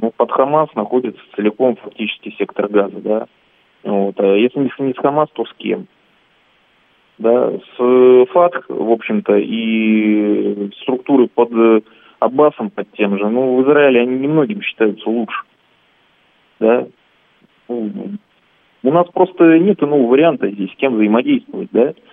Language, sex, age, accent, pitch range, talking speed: Russian, male, 20-39, native, 105-150 Hz, 135 wpm